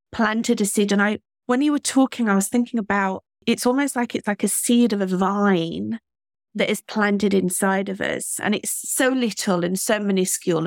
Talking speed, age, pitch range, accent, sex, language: 200 wpm, 30-49, 180-215 Hz, British, female, English